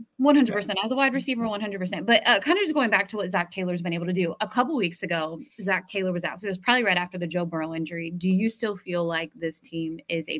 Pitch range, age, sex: 180-245 Hz, 20-39, female